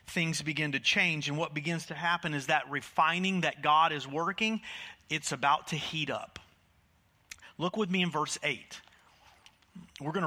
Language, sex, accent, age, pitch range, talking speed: English, male, American, 40-59, 145-195 Hz, 170 wpm